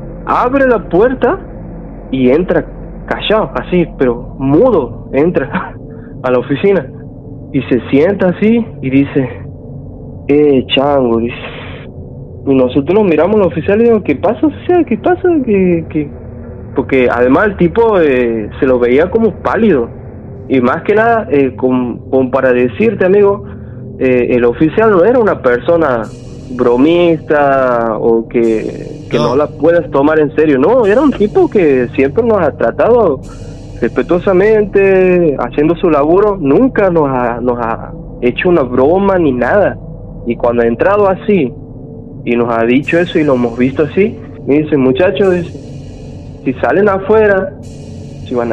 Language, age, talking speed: Spanish, 30-49, 150 wpm